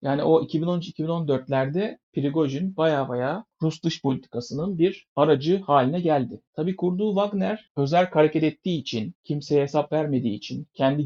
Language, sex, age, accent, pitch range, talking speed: Turkish, male, 60-79, native, 130-160 Hz, 135 wpm